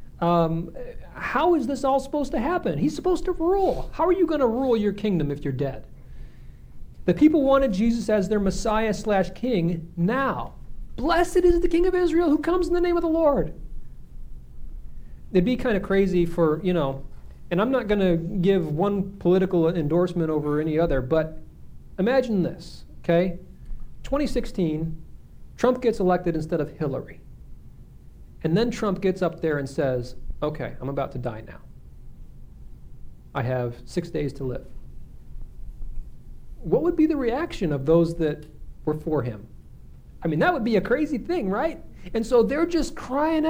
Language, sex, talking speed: English, male, 170 wpm